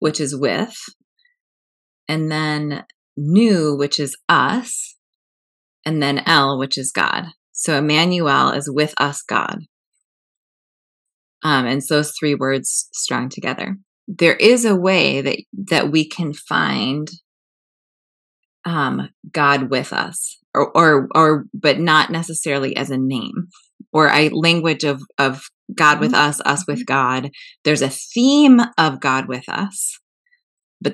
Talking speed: 135 wpm